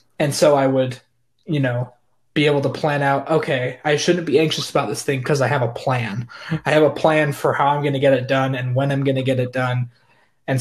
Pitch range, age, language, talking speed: 130-150 Hz, 20-39, English, 255 wpm